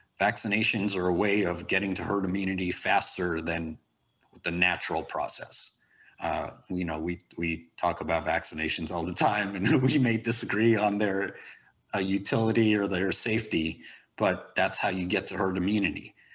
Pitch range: 90-110 Hz